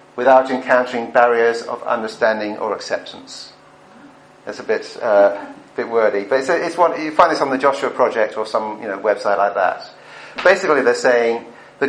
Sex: male